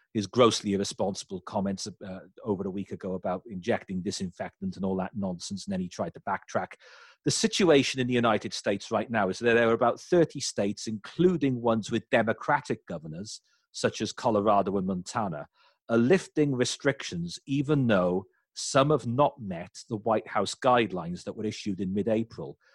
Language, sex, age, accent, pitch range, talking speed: English, male, 40-59, British, 100-130 Hz, 170 wpm